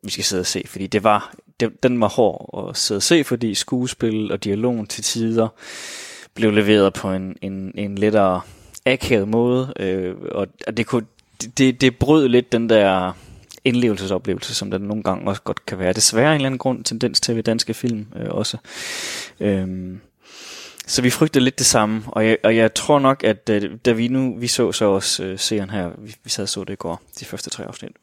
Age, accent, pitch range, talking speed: 20-39, native, 100-120 Hz, 215 wpm